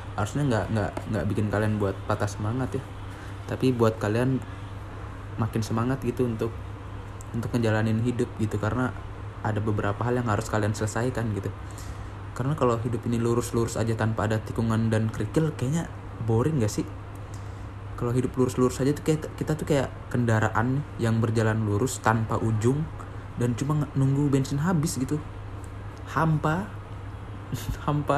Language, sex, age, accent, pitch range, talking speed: Indonesian, male, 20-39, native, 100-120 Hz, 145 wpm